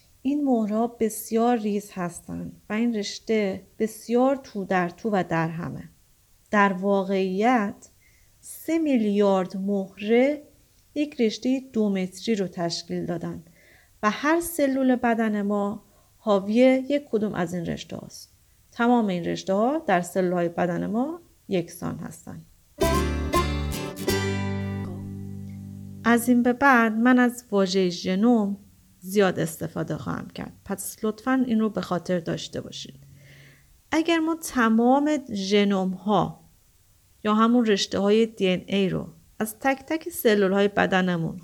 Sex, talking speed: female, 130 wpm